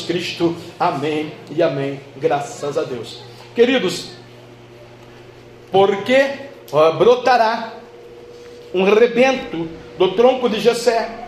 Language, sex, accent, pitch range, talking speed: Portuguese, male, Brazilian, 180-245 Hz, 85 wpm